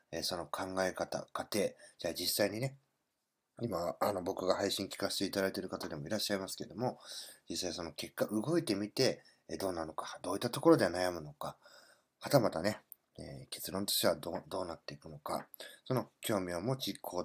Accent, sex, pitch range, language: native, male, 95-135 Hz, Japanese